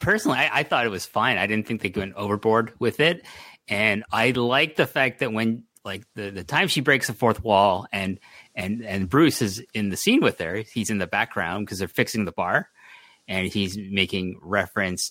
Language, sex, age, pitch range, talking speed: English, male, 30-49, 95-130 Hz, 215 wpm